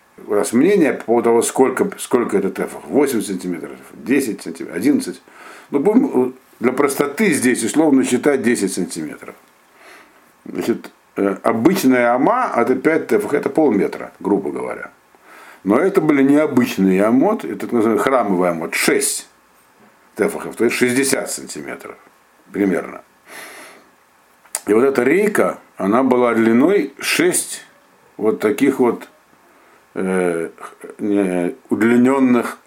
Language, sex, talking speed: Russian, male, 115 wpm